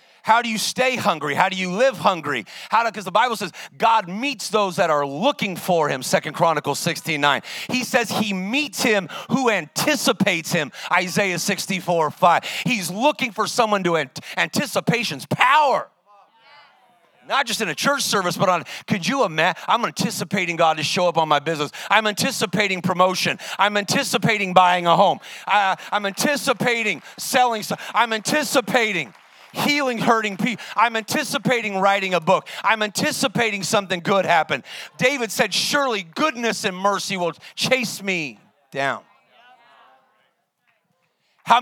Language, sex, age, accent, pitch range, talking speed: English, male, 40-59, American, 175-230 Hz, 150 wpm